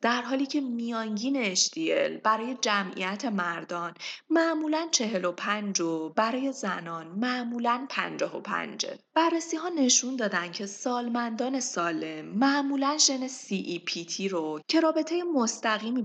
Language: Persian